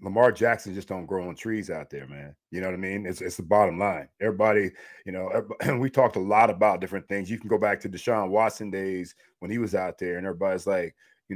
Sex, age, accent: male, 40-59, American